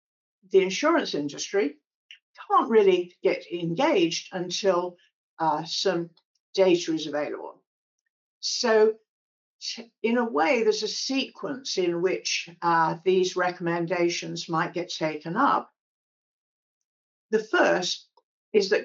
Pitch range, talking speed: 170-220 Hz, 105 wpm